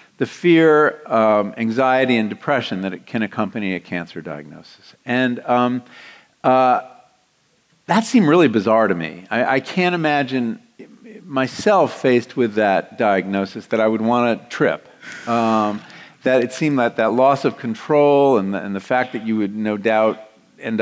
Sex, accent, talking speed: male, American, 165 wpm